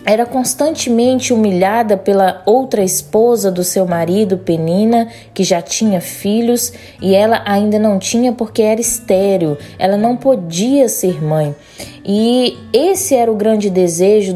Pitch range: 200-275 Hz